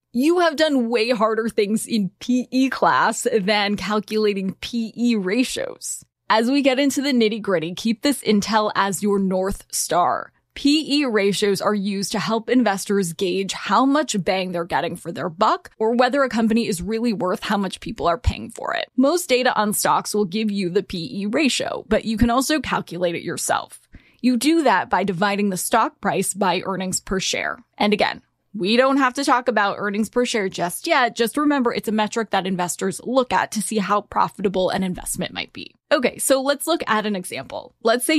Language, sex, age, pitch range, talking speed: English, female, 10-29, 195-255 Hz, 195 wpm